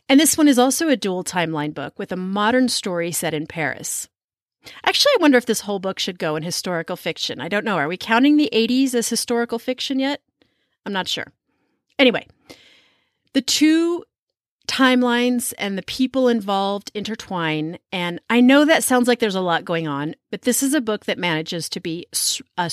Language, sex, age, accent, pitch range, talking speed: English, female, 30-49, American, 180-255 Hz, 195 wpm